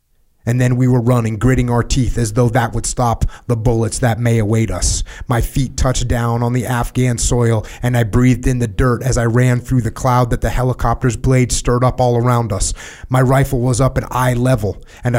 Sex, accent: male, American